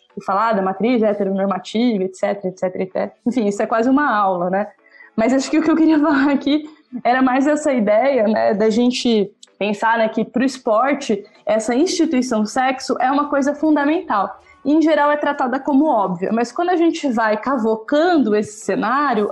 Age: 20-39